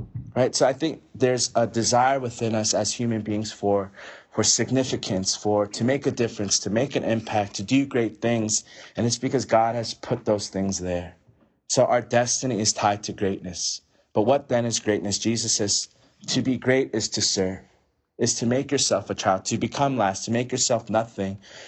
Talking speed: 195 wpm